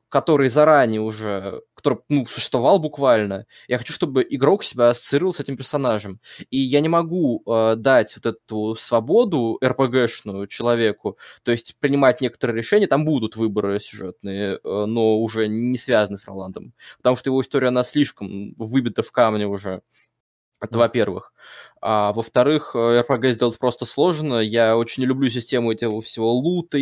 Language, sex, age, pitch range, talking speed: Russian, male, 20-39, 110-135 Hz, 155 wpm